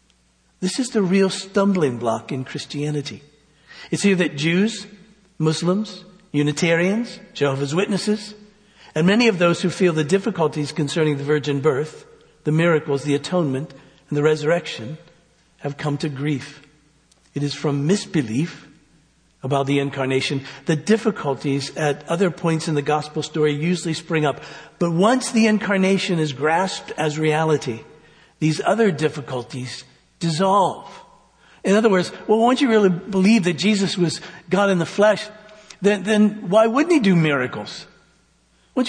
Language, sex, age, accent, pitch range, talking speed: English, male, 60-79, American, 150-210 Hz, 145 wpm